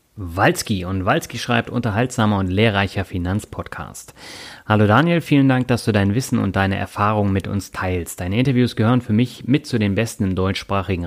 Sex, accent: male, German